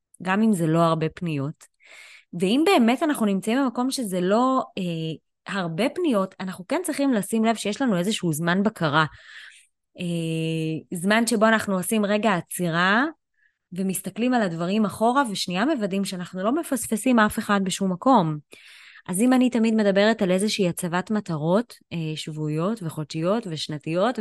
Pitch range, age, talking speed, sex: 180-235 Hz, 20-39, 145 wpm, female